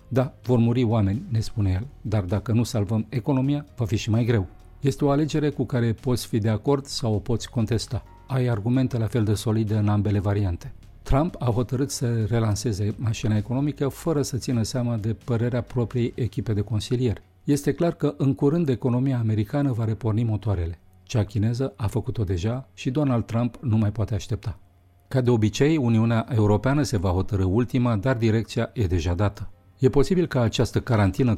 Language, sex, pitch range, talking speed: Romanian, male, 105-125 Hz, 185 wpm